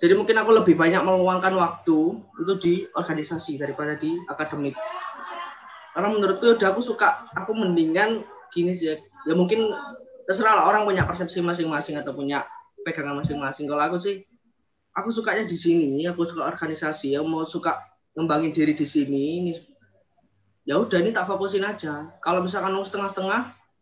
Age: 20-39